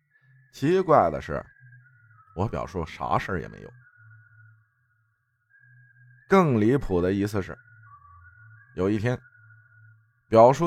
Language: Chinese